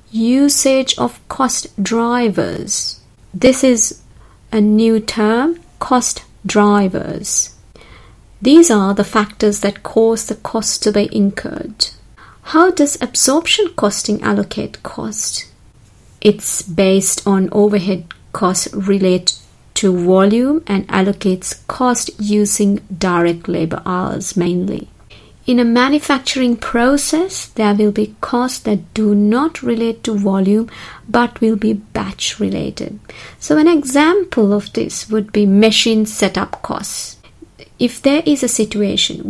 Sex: female